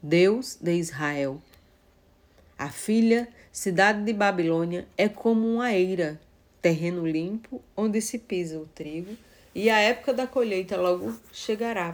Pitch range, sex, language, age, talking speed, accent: 165-225 Hz, female, Portuguese, 40-59, 130 wpm, Brazilian